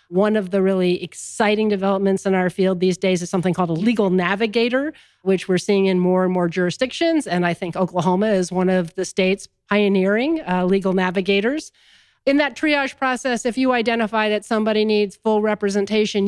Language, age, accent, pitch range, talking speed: English, 40-59, American, 185-215 Hz, 185 wpm